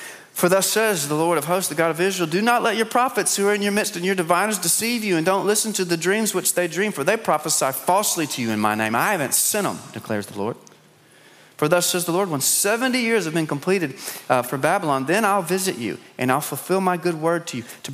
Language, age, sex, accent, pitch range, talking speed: English, 30-49, male, American, 115-170 Hz, 260 wpm